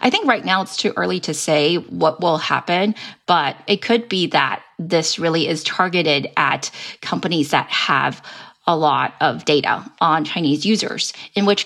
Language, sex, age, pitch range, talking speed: English, female, 30-49, 160-200 Hz, 175 wpm